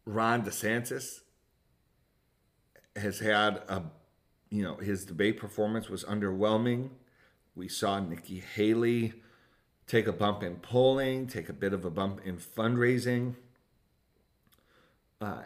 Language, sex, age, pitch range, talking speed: English, male, 40-59, 90-110 Hz, 115 wpm